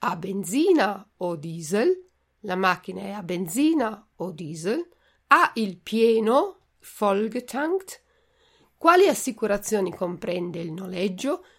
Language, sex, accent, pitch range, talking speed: Italian, female, native, 180-240 Hz, 105 wpm